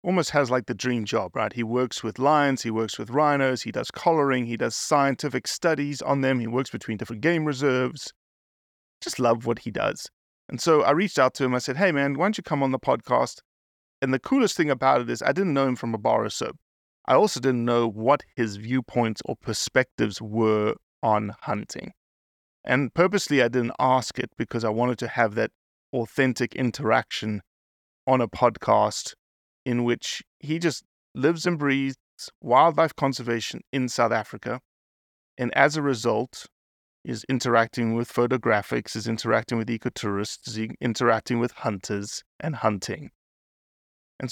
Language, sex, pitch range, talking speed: English, male, 115-140 Hz, 175 wpm